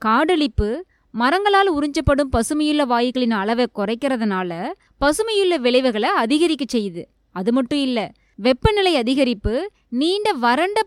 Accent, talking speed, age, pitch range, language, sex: native, 95 wpm, 20-39, 235-320 Hz, Tamil, female